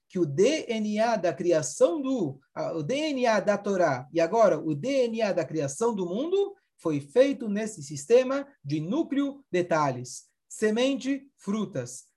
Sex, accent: male, Brazilian